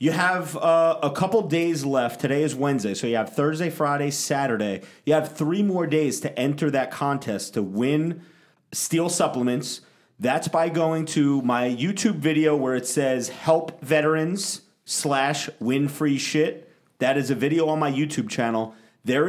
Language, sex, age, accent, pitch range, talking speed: English, male, 30-49, American, 120-155 Hz, 170 wpm